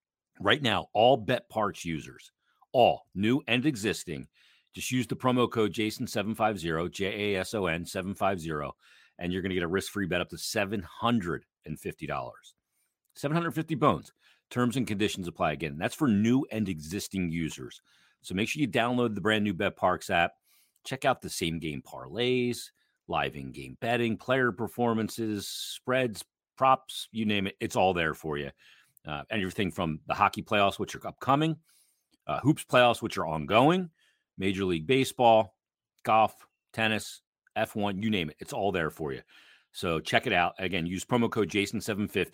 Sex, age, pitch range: male, 40-59, 80-115 Hz